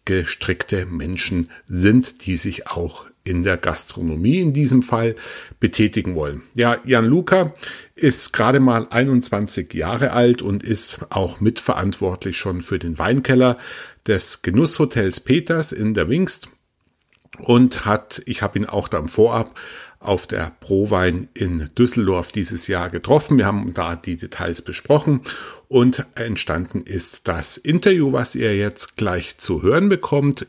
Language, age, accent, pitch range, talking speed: German, 50-69, German, 90-125 Hz, 140 wpm